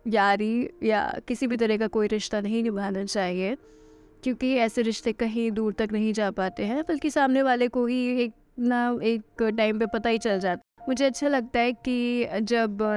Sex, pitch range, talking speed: female, 215-260 Hz, 190 wpm